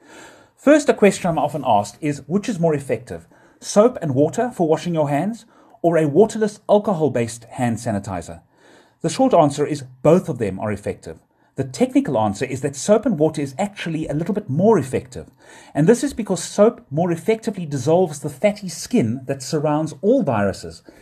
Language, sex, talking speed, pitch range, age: English, male, 180 wpm, 125-200 Hz, 30-49